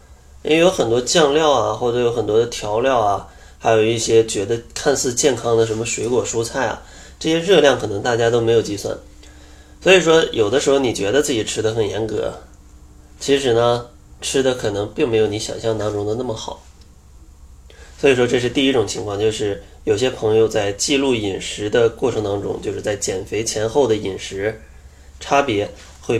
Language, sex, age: Chinese, male, 20-39